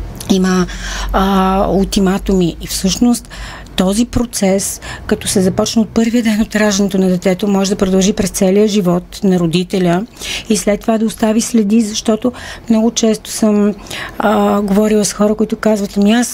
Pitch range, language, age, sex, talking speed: 180-215 Hz, Bulgarian, 40-59, female, 155 wpm